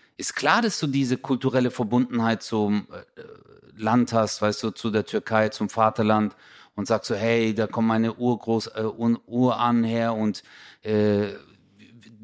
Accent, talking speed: German, 155 wpm